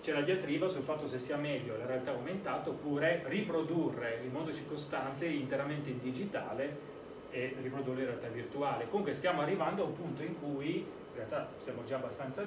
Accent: native